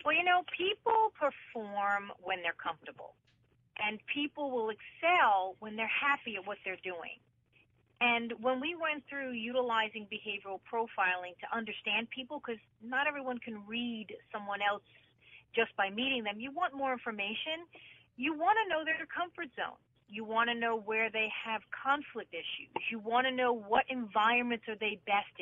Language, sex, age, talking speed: English, female, 40-59, 165 wpm